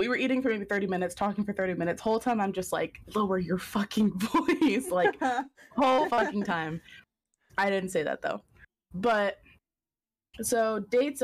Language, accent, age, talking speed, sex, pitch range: English, American, 20-39, 170 wpm, female, 175-220 Hz